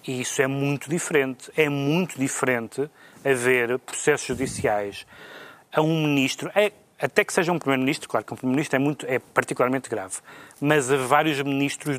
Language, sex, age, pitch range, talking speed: Portuguese, male, 30-49, 125-145 Hz, 155 wpm